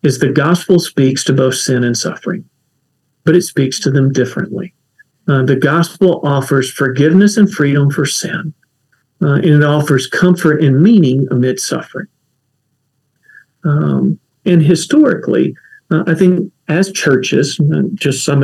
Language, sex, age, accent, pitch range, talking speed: English, male, 50-69, American, 135-170 Hz, 140 wpm